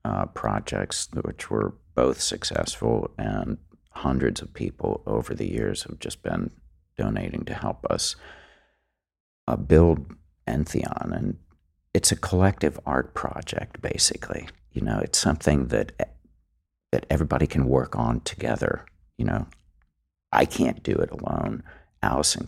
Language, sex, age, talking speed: English, male, 50-69, 130 wpm